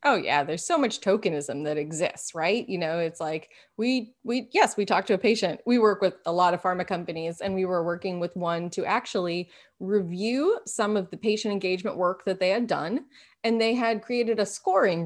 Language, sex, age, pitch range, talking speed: English, female, 20-39, 185-240 Hz, 215 wpm